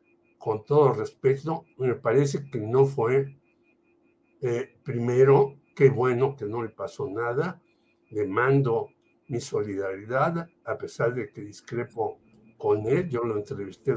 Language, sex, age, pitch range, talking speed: Spanish, male, 60-79, 125-165 Hz, 135 wpm